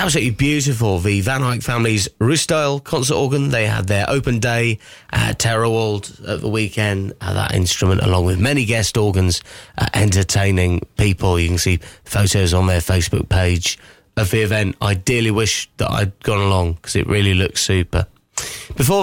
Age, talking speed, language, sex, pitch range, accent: 30-49, 165 wpm, English, male, 100-135 Hz, British